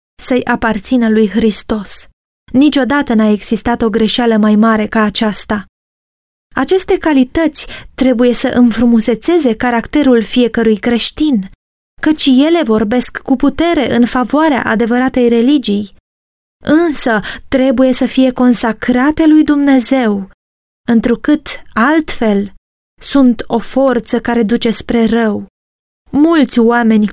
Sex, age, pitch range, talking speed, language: female, 20-39, 220-255 Hz, 105 wpm, Romanian